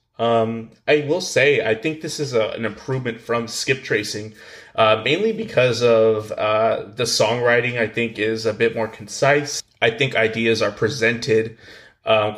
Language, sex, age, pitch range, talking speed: English, male, 20-39, 110-120 Hz, 160 wpm